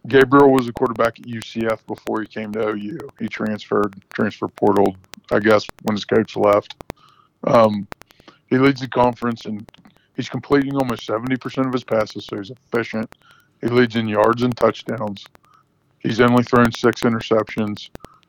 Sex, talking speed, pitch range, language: male, 160 wpm, 110-130 Hz, English